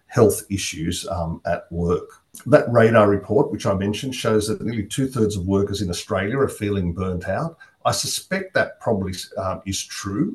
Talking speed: 175 wpm